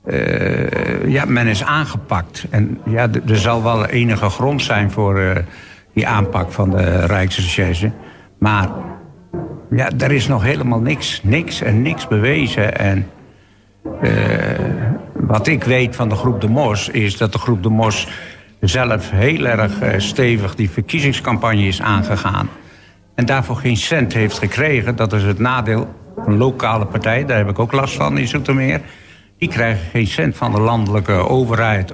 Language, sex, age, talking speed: Dutch, male, 60-79, 155 wpm